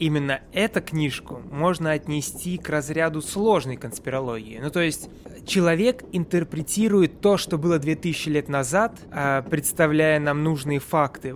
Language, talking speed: Russian, 125 wpm